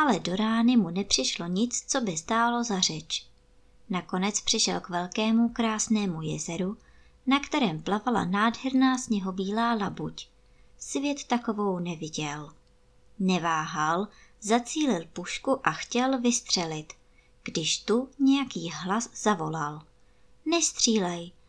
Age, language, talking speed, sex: 20-39, Czech, 110 wpm, male